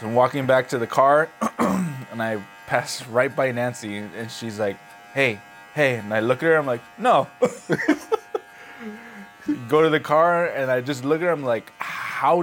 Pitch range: 100-140 Hz